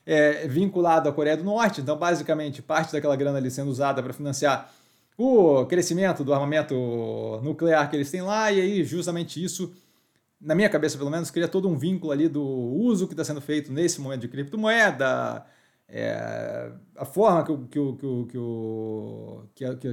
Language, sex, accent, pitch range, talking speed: Portuguese, male, Brazilian, 140-180 Hz, 155 wpm